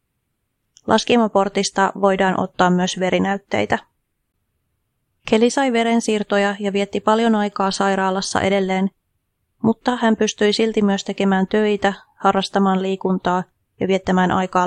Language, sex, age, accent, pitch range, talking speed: Finnish, female, 30-49, native, 185-215 Hz, 105 wpm